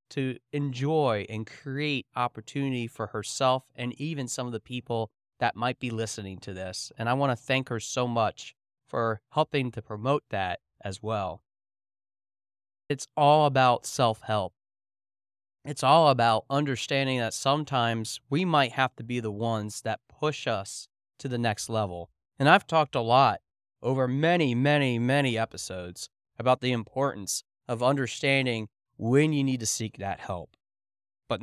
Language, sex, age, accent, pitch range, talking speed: English, male, 30-49, American, 110-140 Hz, 155 wpm